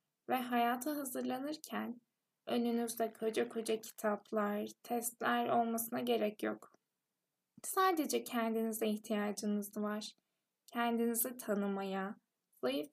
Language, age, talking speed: Turkish, 10-29, 85 wpm